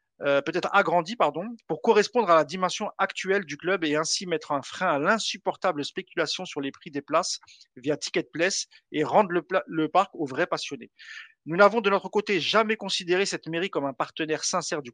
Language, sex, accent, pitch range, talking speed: French, male, French, 155-200 Hz, 200 wpm